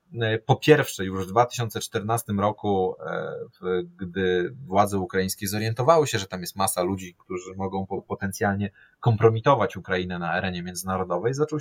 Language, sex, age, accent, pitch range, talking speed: Polish, male, 30-49, native, 95-130 Hz, 130 wpm